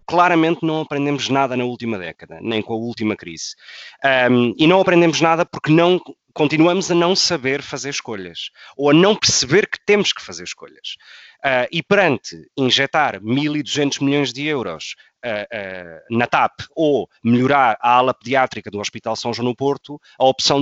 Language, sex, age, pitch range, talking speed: Portuguese, male, 20-39, 125-165 Hz, 155 wpm